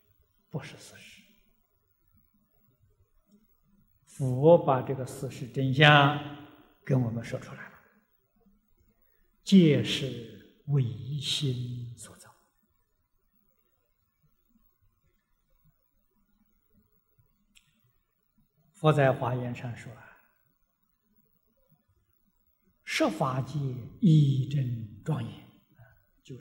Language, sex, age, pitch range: Chinese, male, 60-79, 130-205 Hz